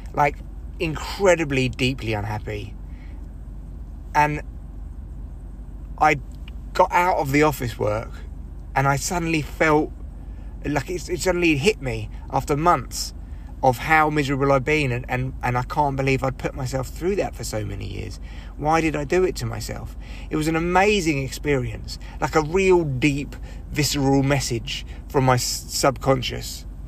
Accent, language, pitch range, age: British, English, 90-145 Hz, 30-49